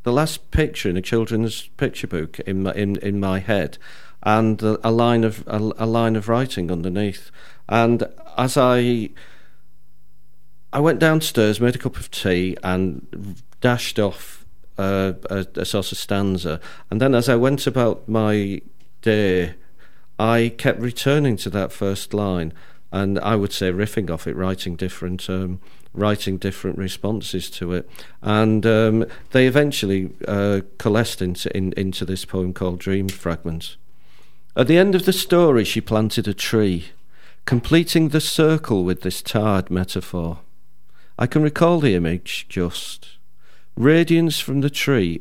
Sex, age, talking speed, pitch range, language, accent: male, 50-69, 155 wpm, 95-120 Hz, English, British